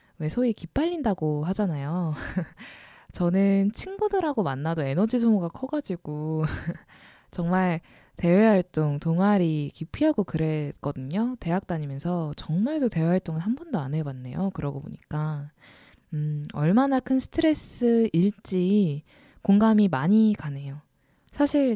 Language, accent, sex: Korean, native, female